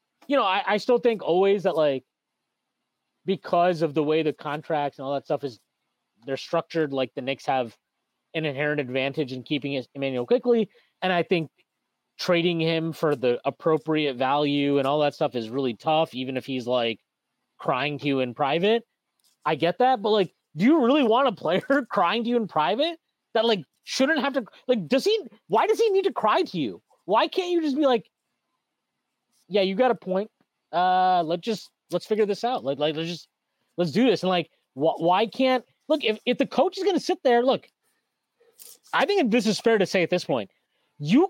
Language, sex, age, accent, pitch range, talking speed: English, male, 30-49, American, 155-245 Hz, 205 wpm